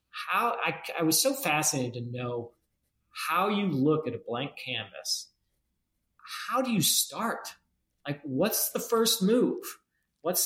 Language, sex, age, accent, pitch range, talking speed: English, male, 40-59, American, 125-190 Hz, 145 wpm